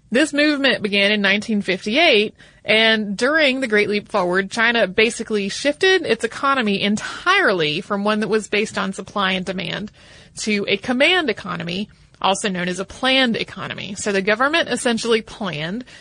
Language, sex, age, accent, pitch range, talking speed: English, female, 30-49, American, 200-255 Hz, 155 wpm